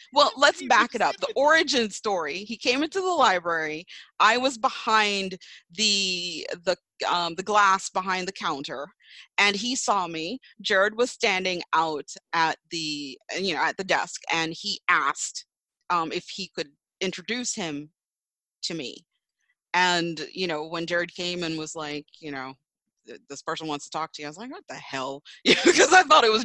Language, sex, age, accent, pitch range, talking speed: English, female, 30-49, American, 175-245 Hz, 180 wpm